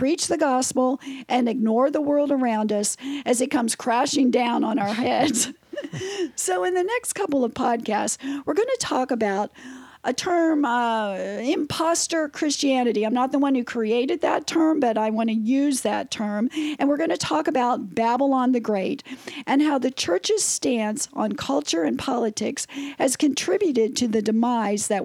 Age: 50-69